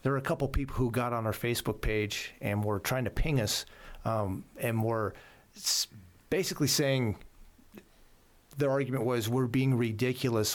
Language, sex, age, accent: English, male, 40-59, American